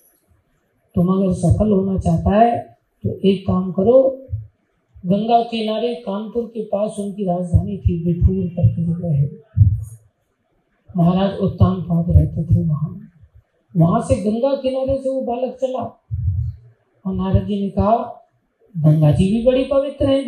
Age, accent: 40-59, native